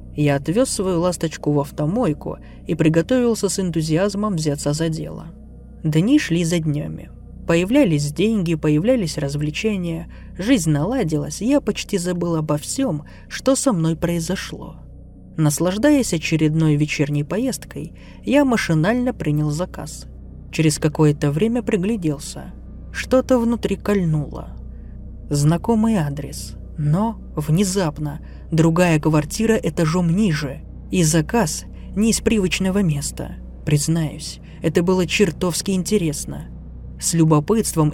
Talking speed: 110 wpm